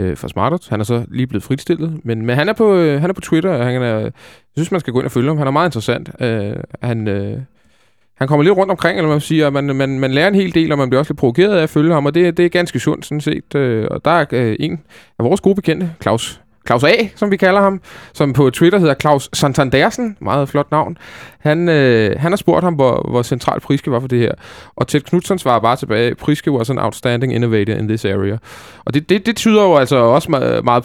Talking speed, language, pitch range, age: 235 wpm, Danish, 110-150 Hz, 20-39